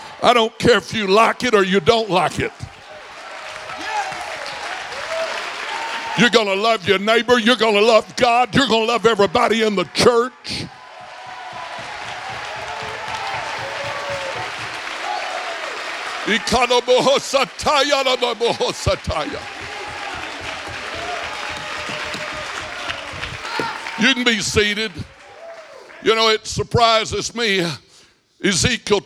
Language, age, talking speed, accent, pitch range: English, 60-79, 80 wpm, American, 190-235 Hz